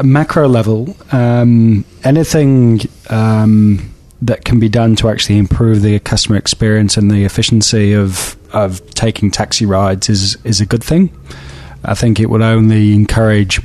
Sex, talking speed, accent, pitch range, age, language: male, 155 wpm, British, 105-120 Hz, 20-39, English